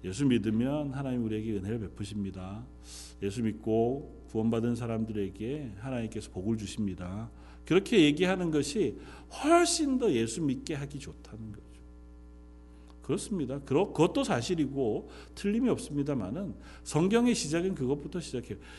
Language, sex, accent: Korean, male, native